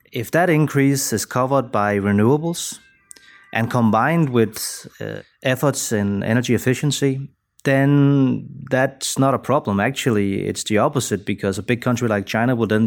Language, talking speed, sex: English, 150 wpm, male